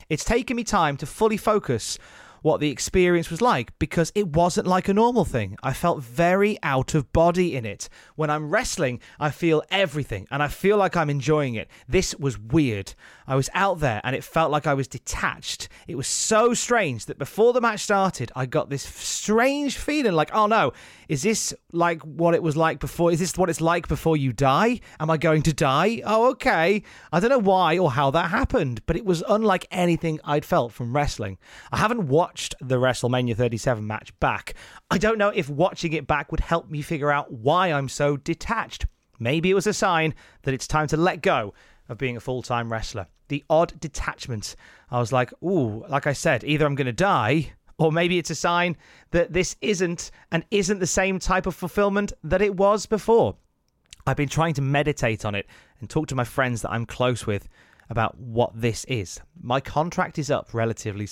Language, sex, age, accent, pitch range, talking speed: English, male, 30-49, British, 130-185 Hz, 205 wpm